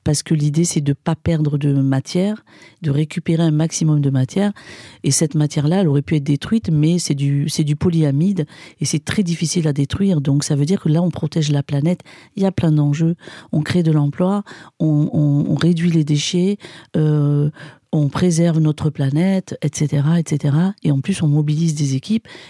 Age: 40-59